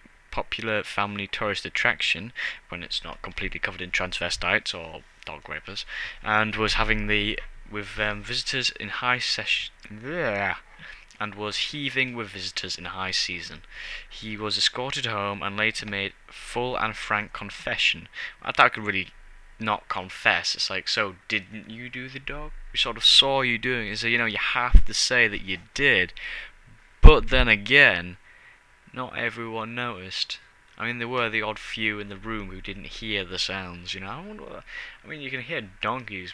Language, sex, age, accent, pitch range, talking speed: English, male, 10-29, British, 100-120 Hz, 175 wpm